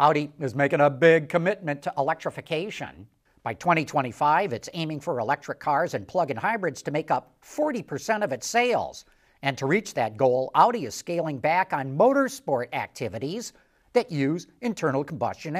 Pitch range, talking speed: 140-200 Hz, 160 wpm